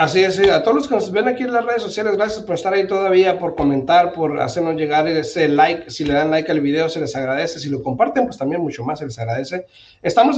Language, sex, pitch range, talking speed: Spanish, male, 140-190 Hz, 265 wpm